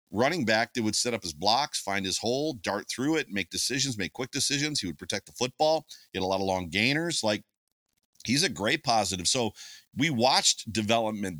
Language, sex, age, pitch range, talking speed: English, male, 40-59, 100-125 Hz, 210 wpm